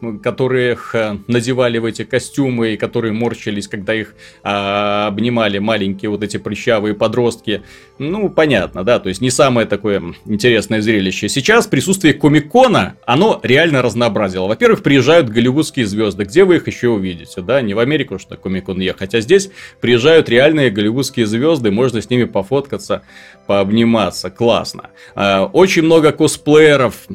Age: 30-49